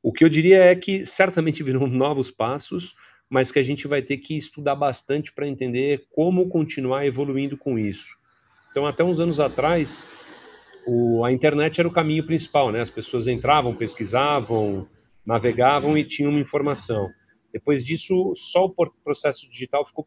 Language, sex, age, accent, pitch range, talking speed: Portuguese, male, 40-59, Brazilian, 125-155 Hz, 165 wpm